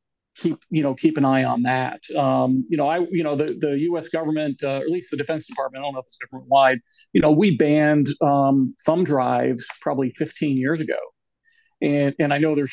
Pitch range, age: 135-155 Hz, 40-59